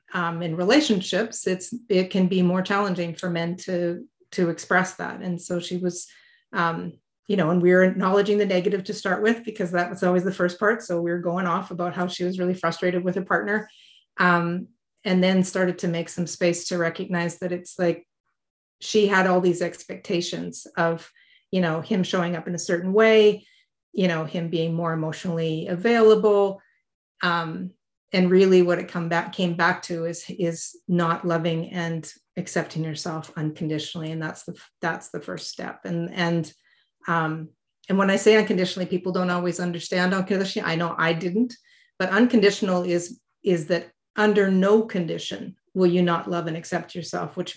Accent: American